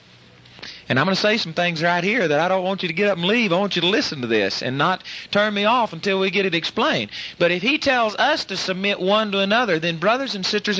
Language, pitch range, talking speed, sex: English, 165-215 Hz, 280 wpm, male